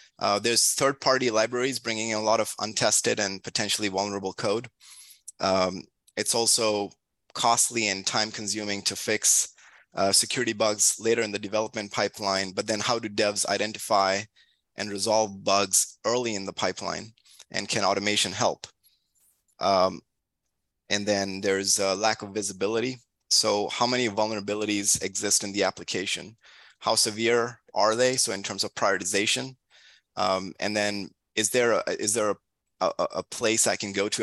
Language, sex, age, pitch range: English, male, 30-49, 100-115 Hz